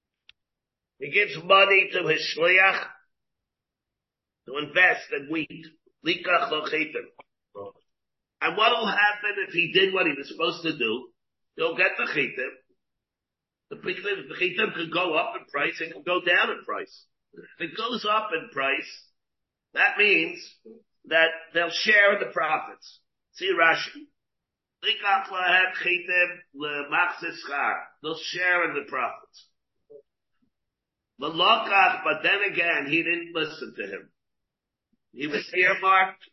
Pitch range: 160-210 Hz